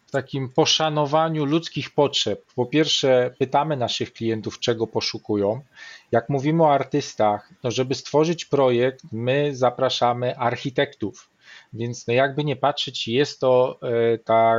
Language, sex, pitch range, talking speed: Polish, male, 120-150 Hz, 115 wpm